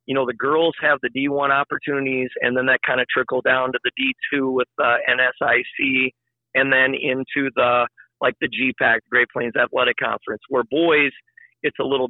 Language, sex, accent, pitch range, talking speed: English, male, American, 125-140 Hz, 185 wpm